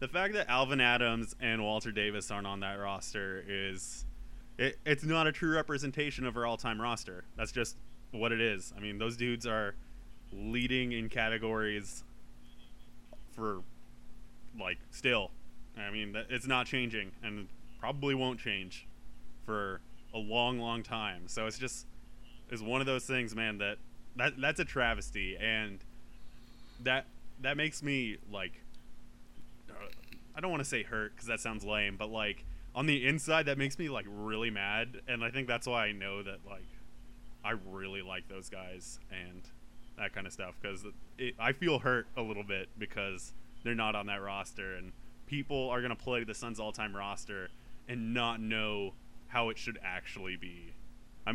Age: 20-39